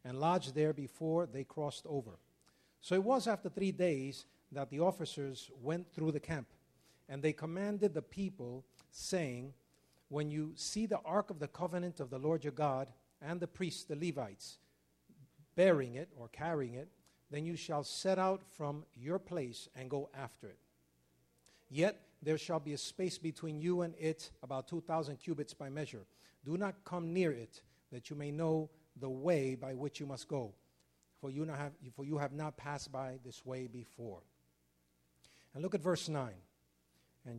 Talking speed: 175 wpm